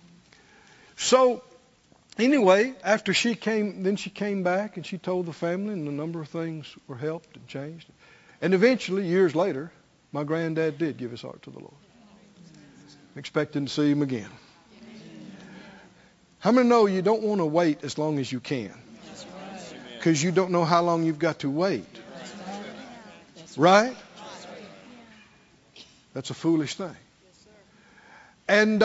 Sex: male